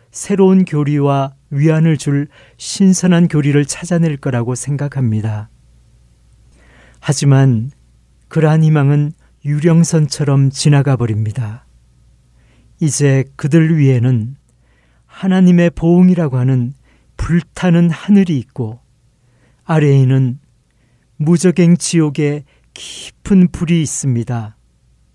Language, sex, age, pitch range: Korean, male, 40-59, 120-170 Hz